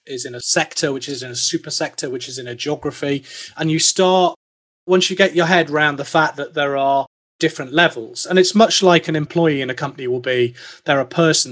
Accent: British